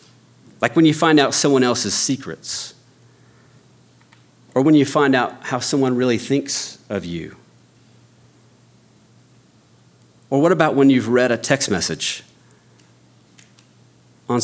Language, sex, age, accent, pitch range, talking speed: English, male, 40-59, American, 105-135 Hz, 120 wpm